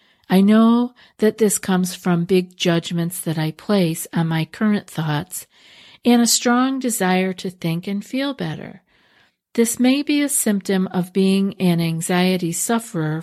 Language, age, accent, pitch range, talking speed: English, 50-69, American, 170-215 Hz, 155 wpm